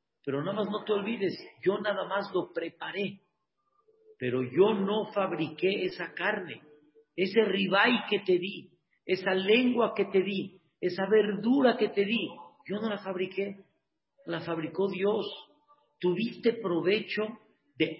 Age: 50-69